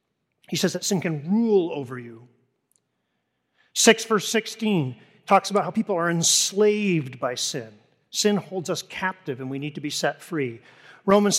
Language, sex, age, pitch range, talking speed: English, male, 40-59, 165-220 Hz, 165 wpm